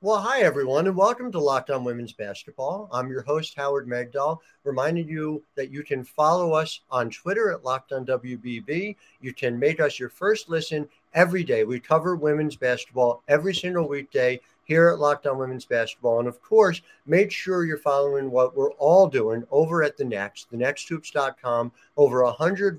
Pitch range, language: 125-175 Hz, English